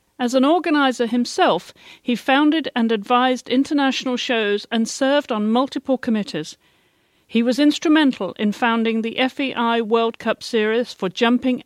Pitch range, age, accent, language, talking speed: 215-265 Hz, 50-69, British, English, 140 wpm